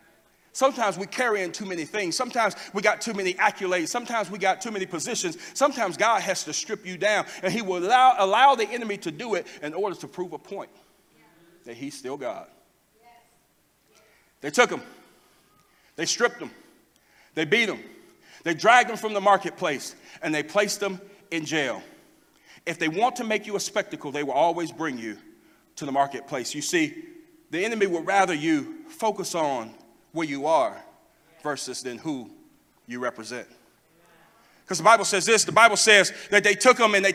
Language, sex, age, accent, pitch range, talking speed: English, male, 40-59, American, 195-280 Hz, 185 wpm